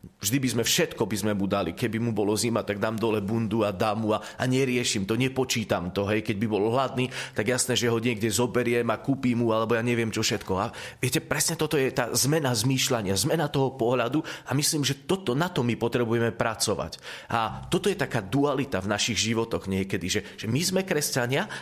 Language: Slovak